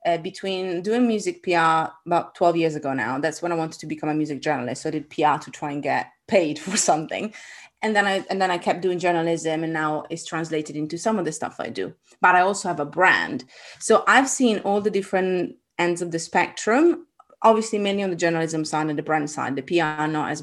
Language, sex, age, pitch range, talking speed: English, female, 30-49, 160-205 Hz, 230 wpm